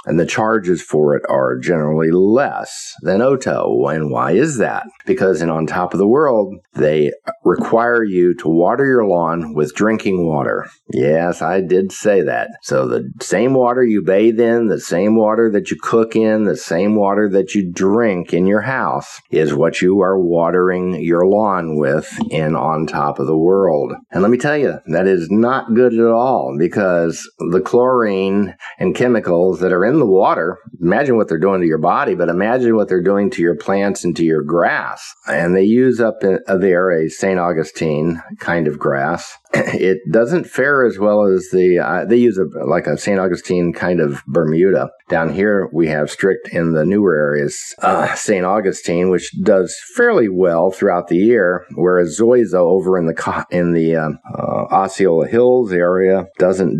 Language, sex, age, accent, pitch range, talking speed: English, male, 50-69, American, 85-105 Hz, 185 wpm